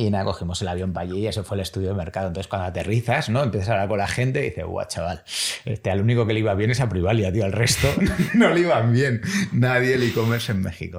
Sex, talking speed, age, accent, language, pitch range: male, 280 wpm, 30-49, Spanish, Spanish, 90-120 Hz